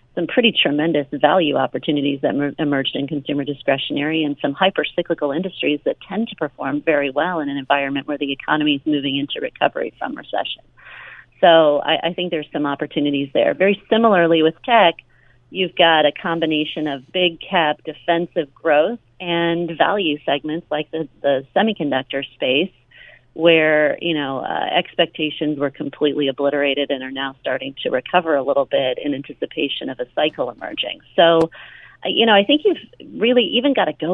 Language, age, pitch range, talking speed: English, 40-59, 140-165 Hz, 165 wpm